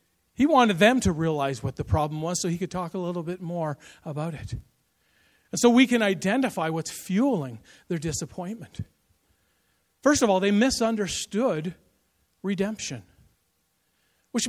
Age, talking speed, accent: 50-69, 145 wpm, American